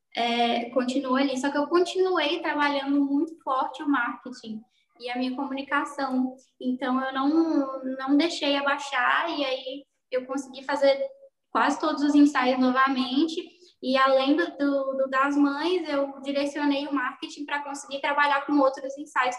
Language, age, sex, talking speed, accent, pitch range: Portuguese, 10-29, female, 150 wpm, Brazilian, 260-295 Hz